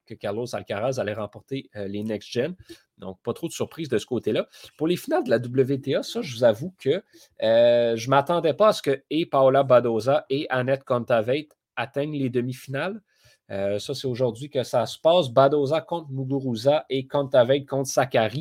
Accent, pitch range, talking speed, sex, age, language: Canadian, 120-150 Hz, 195 wpm, male, 30-49, French